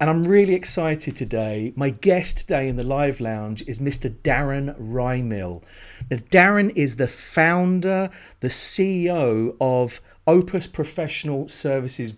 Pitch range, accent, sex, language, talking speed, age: 125-160 Hz, British, male, English, 130 wpm, 40-59